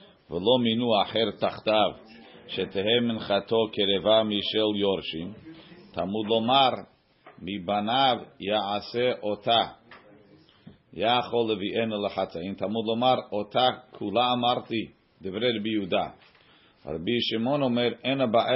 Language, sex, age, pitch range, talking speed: English, male, 40-59, 100-120 Hz, 65 wpm